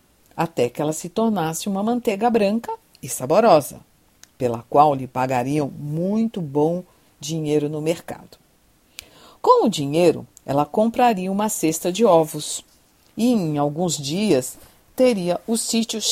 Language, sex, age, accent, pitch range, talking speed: Portuguese, female, 50-69, Brazilian, 140-220 Hz, 130 wpm